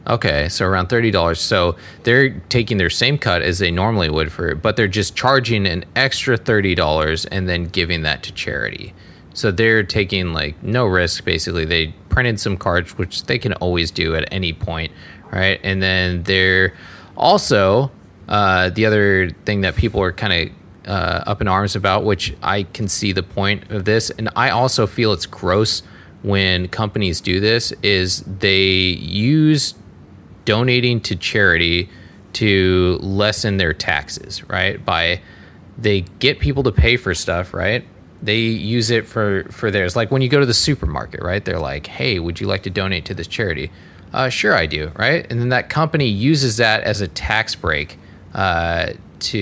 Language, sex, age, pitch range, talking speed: English, male, 20-39, 90-110 Hz, 175 wpm